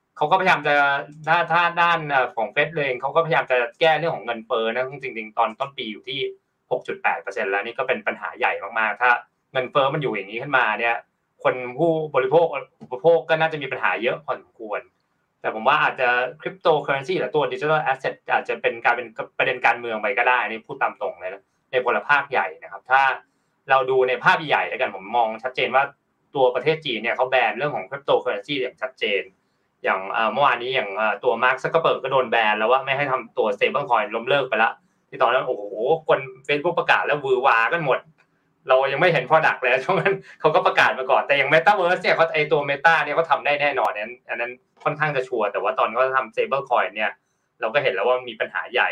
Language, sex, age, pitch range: Thai, male, 20-39, 130-180 Hz